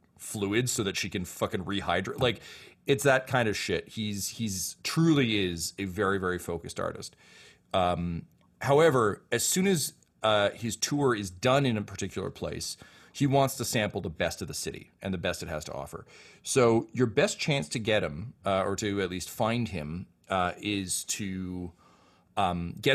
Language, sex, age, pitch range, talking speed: English, male, 30-49, 85-115 Hz, 185 wpm